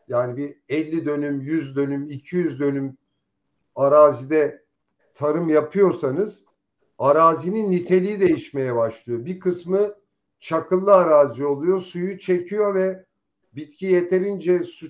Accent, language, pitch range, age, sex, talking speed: native, Turkish, 150-190 Hz, 50-69, male, 105 wpm